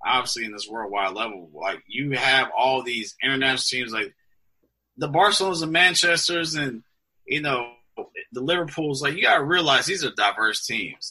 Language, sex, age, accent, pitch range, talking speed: English, male, 30-49, American, 110-155 Hz, 160 wpm